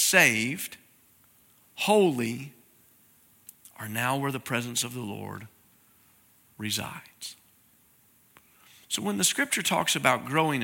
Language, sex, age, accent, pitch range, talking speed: English, male, 40-59, American, 115-160 Hz, 100 wpm